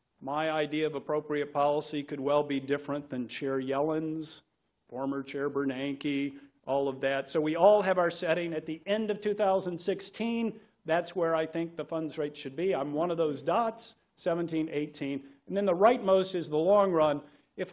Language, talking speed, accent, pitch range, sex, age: English, 185 wpm, American, 145-190 Hz, male, 50-69